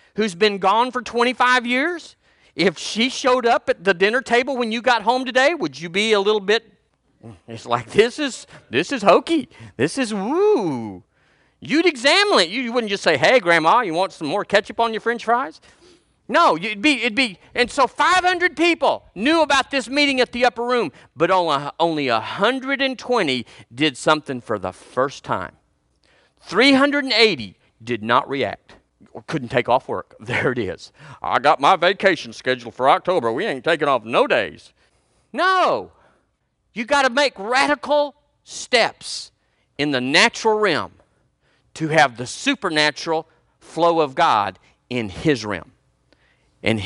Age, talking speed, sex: 40-59, 160 wpm, male